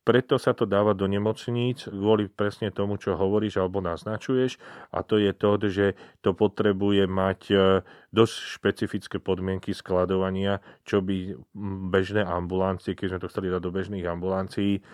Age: 40-59